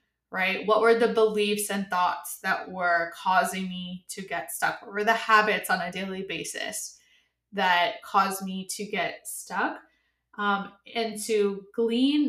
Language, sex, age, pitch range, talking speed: English, female, 20-39, 195-220 Hz, 155 wpm